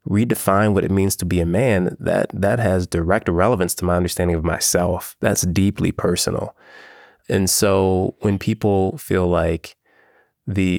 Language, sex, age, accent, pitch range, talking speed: English, male, 20-39, American, 90-110 Hz, 155 wpm